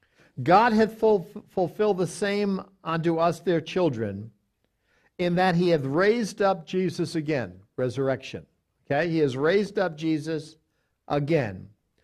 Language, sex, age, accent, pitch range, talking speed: English, male, 60-79, American, 130-180 Hz, 125 wpm